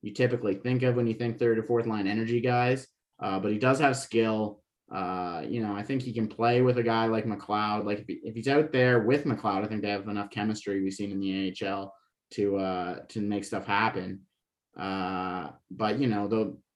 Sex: male